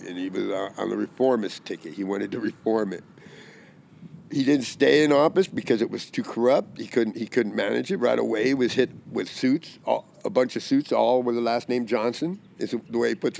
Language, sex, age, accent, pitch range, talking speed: English, male, 50-69, American, 115-165 Hz, 225 wpm